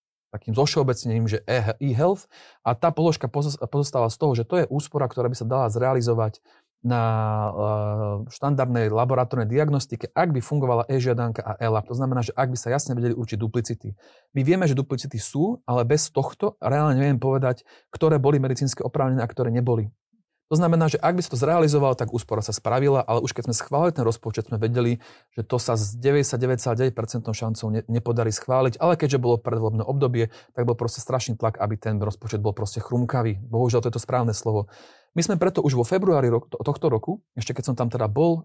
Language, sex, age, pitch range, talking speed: Slovak, male, 30-49, 115-140 Hz, 195 wpm